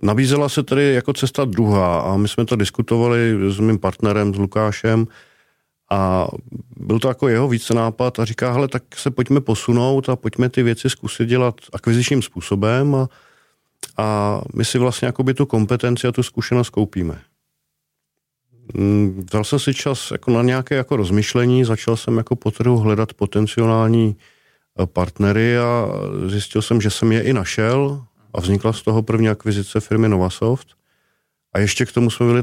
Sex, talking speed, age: male, 165 wpm, 50-69